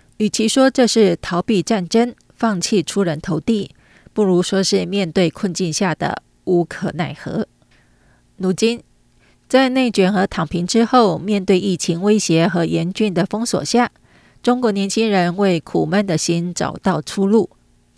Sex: female